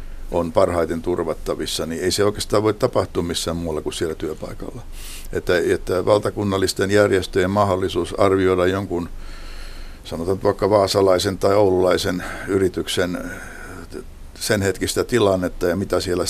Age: 60-79